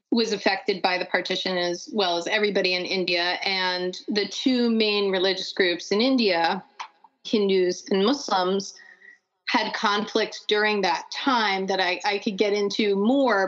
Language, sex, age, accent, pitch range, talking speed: English, female, 30-49, American, 175-220 Hz, 150 wpm